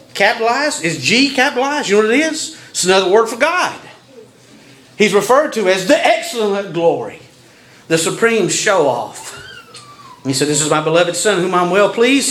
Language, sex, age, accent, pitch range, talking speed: English, male, 40-59, American, 210-320 Hz, 175 wpm